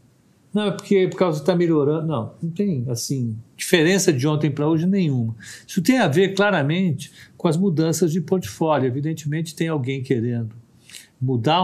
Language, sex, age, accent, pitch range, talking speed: Portuguese, male, 50-69, Brazilian, 120-160 Hz, 175 wpm